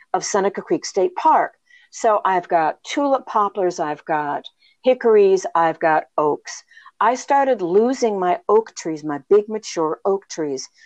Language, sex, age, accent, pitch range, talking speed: English, female, 50-69, American, 175-230 Hz, 150 wpm